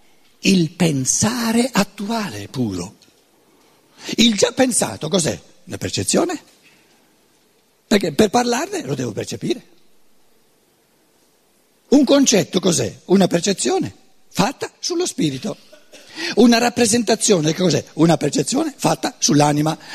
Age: 60-79